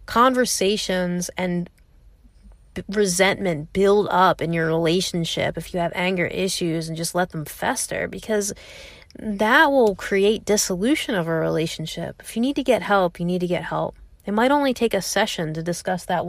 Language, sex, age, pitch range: English, female, 30-49, 175-225 Hz